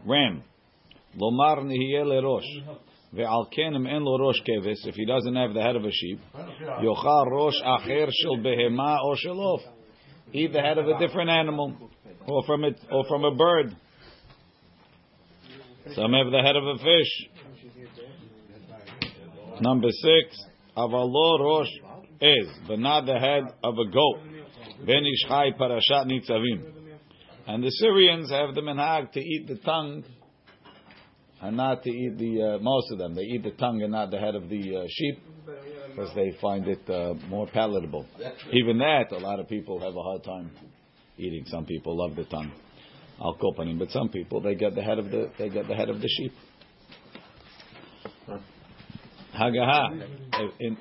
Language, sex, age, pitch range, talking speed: English, male, 50-69, 110-145 Hz, 160 wpm